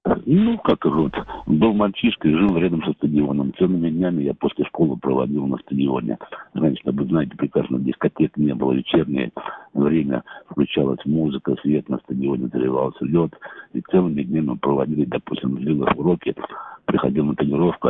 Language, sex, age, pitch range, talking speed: Russian, male, 60-79, 70-85 Hz, 150 wpm